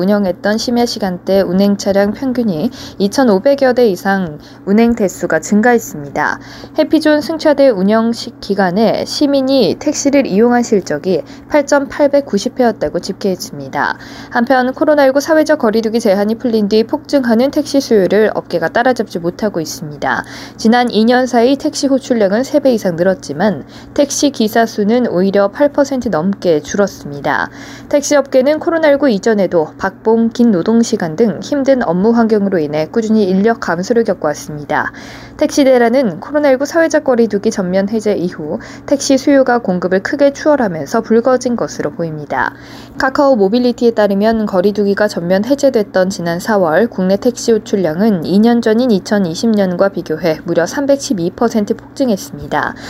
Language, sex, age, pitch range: Korean, female, 20-39, 195-260 Hz